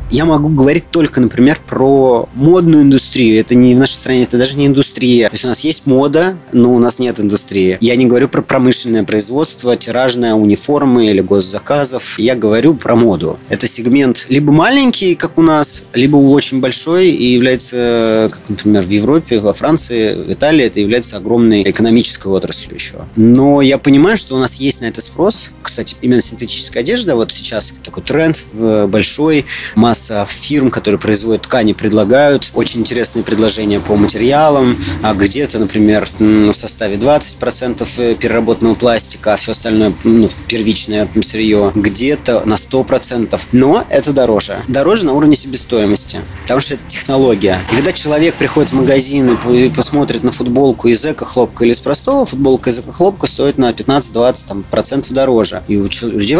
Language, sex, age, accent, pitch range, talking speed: Russian, male, 20-39, native, 110-135 Hz, 165 wpm